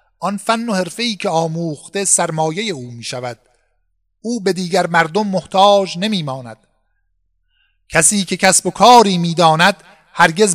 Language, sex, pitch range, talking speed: Persian, male, 155-200 Hz, 130 wpm